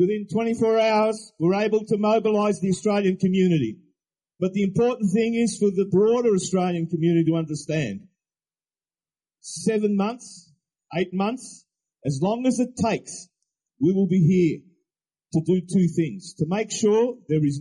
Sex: male